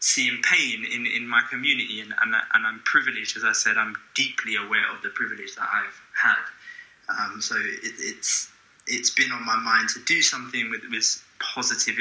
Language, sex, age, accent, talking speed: English, male, 20-39, British, 190 wpm